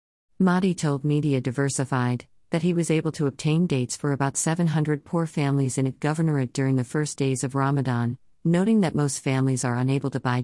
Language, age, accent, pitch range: English, 50-69, American, 130-150 Hz